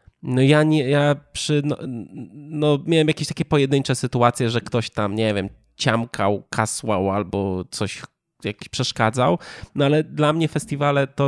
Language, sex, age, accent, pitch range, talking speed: Polish, male, 20-39, native, 115-145 Hz, 155 wpm